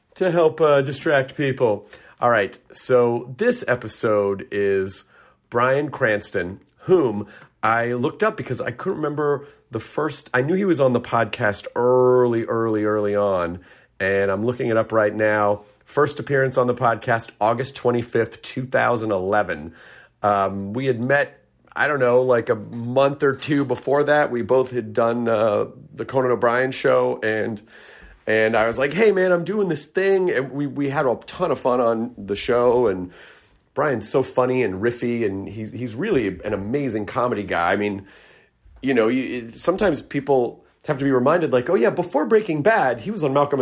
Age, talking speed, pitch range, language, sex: 40-59, 175 wpm, 110-140 Hz, English, male